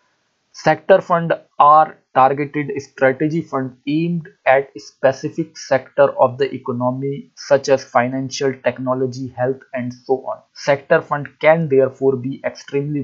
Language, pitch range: English, 130-150 Hz